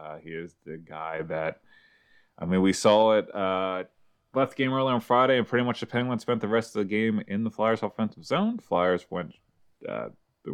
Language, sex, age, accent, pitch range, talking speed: English, male, 20-39, American, 85-115 Hz, 215 wpm